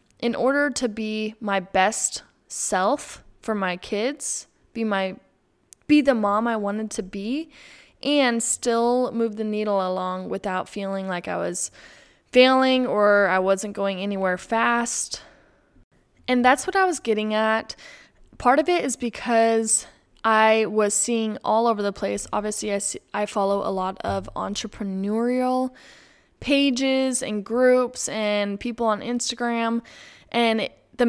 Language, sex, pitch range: English, female, 195-240 Hz